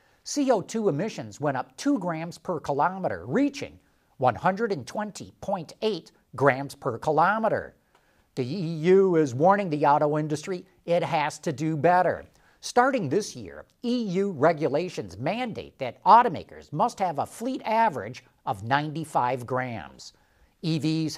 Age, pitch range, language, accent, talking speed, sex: 50-69, 150-220 Hz, English, American, 120 wpm, male